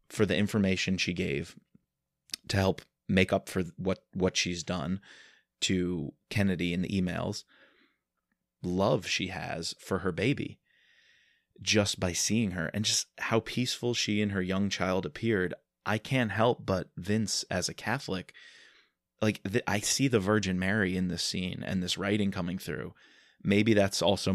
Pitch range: 90-105 Hz